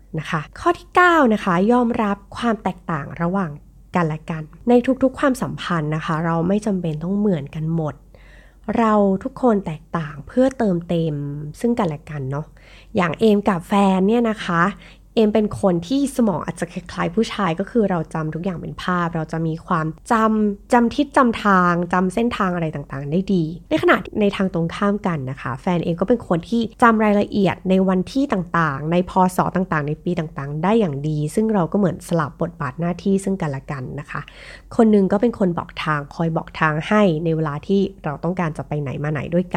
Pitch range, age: 165-215 Hz, 20-39